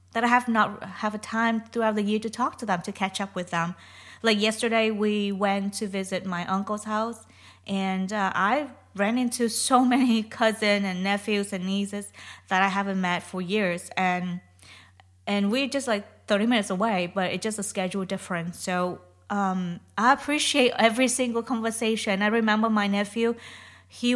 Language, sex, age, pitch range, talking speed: English, female, 20-39, 190-235 Hz, 180 wpm